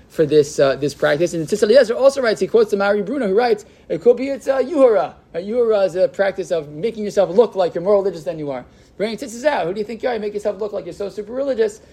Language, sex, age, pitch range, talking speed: English, male, 20-39, 155-210 Hz, 290 wpm